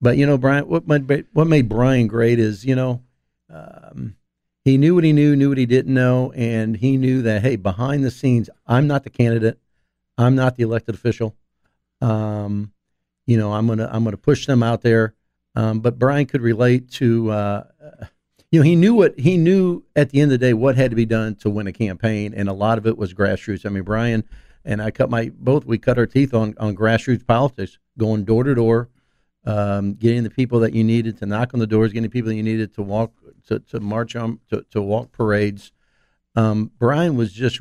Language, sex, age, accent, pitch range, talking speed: English, male, 50-69, American, 110-130 Hz, 220 wpm